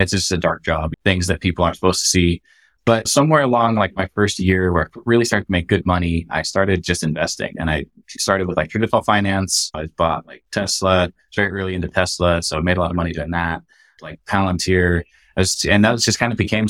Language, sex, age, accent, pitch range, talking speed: English, male, 20-39, American, 85-100 Hz, 235 wpm